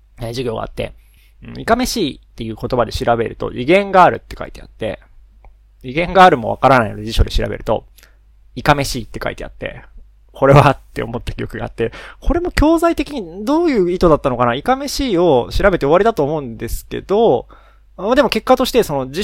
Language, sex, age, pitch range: Japanese, male, 20-39, 115-170 Hz